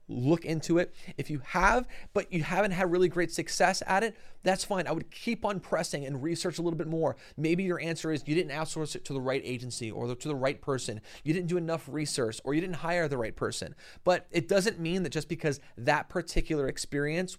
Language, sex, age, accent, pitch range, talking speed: English, male, 30-49, American, 130-170 Hz, 230 wpm